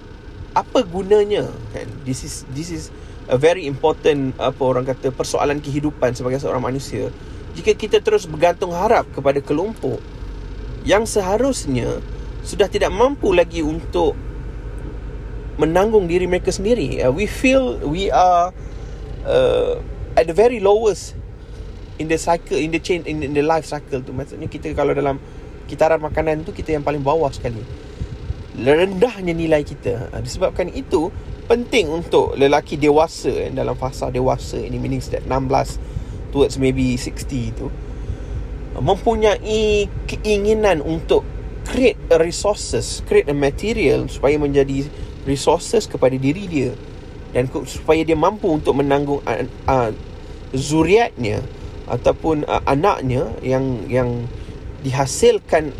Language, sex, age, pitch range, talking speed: Malay, male, 30-49, 130-190 Hz, 125 wpm